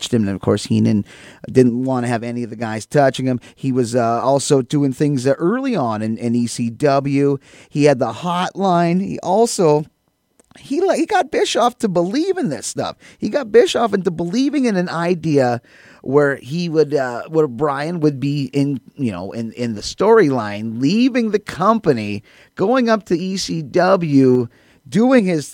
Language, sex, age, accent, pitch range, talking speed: English, male, 30-49, American, 125-185 Hz, 175 wpm